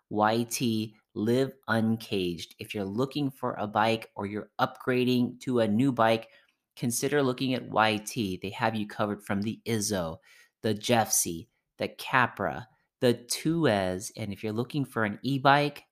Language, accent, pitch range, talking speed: English, American, 100-120 Hz, 150 wpm